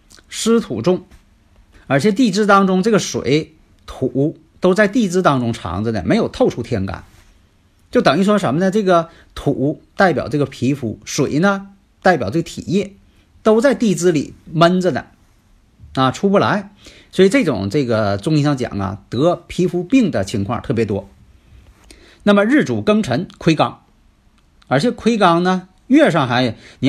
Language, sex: Chinese, male